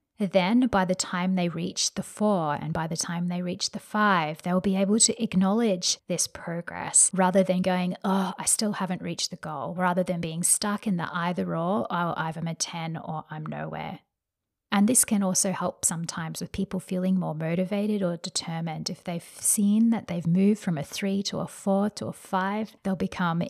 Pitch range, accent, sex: 175-205 Hz, Australian, female